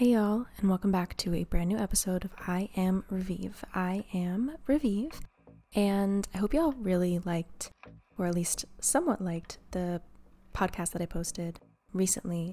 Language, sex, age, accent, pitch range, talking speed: English, female, 20-39, American, 170-195 Hz, 165 wpm